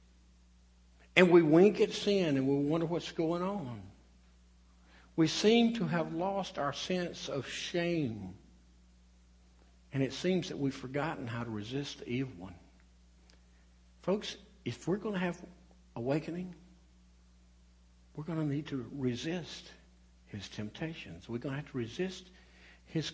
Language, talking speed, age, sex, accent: English, 140 wpm, 60-79, male, American